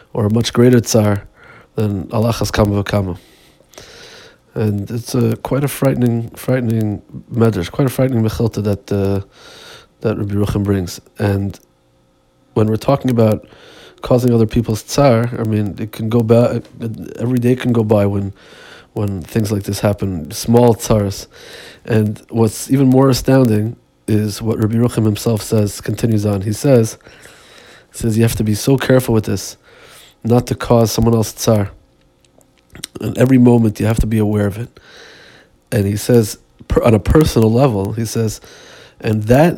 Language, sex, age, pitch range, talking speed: Hebrew, male, 20-39, 105-120 Hz, 165 wpm